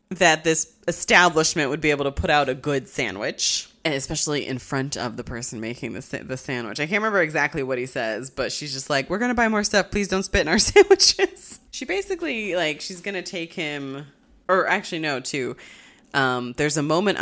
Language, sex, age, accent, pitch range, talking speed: English, female, 20-39, American, 130-175 Hz, 215 wpm